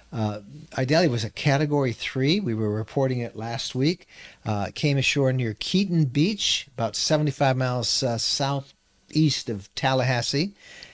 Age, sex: 50-69, male